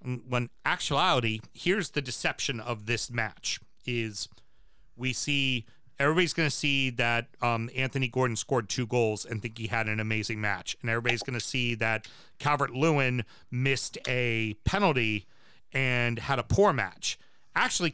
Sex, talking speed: male, 150 wpm